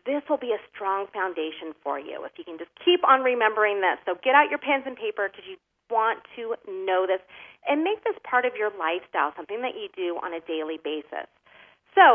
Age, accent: 40-59, American